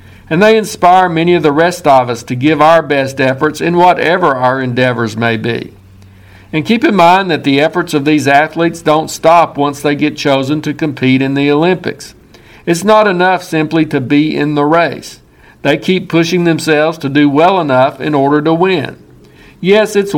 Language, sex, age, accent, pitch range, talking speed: English, male, 50-69, American, 140-165 Hz, 190 wpm